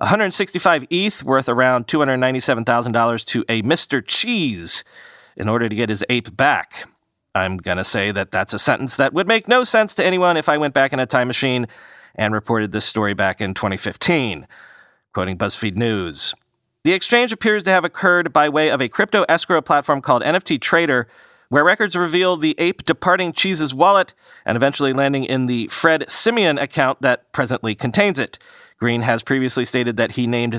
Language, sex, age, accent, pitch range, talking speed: English, male, 40-59, American, 115-165 Hz, 180 wpm